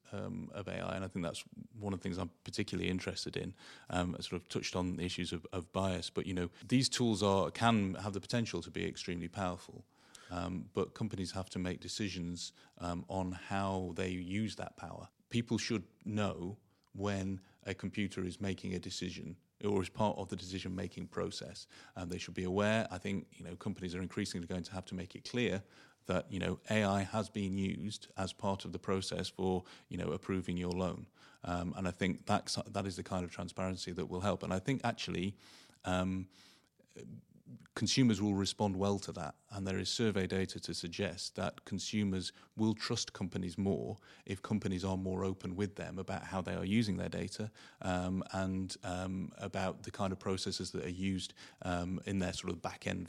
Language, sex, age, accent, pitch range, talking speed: English, male, 30-49, British, 90-100 Hz, 200 wpm